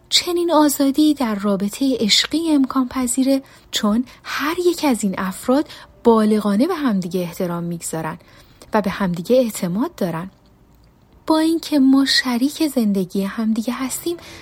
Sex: female